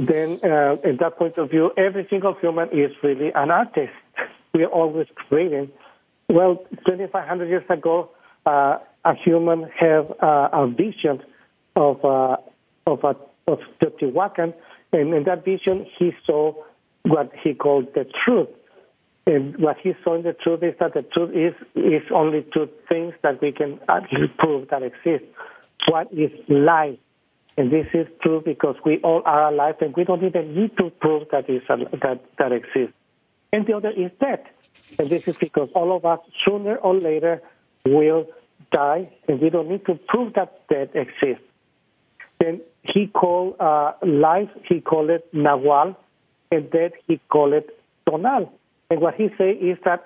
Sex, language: male, English